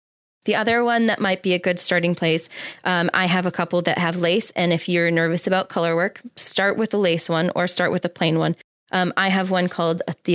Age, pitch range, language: 20-39, 175-210 Hz, English